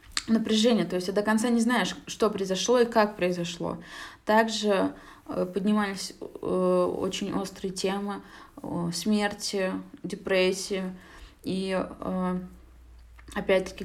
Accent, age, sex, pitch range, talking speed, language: native, 20-39, female, 185-215 Hz, 95 wpm, Russian